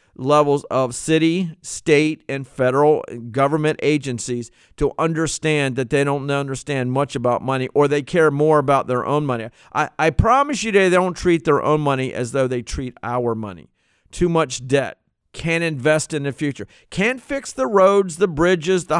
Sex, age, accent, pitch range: male, 50-69, American, 140-185 Hz